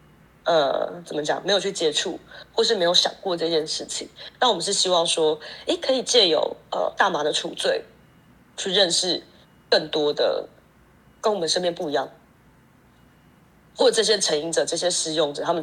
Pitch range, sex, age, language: 165-255 Hz, female, 20-39, Chinese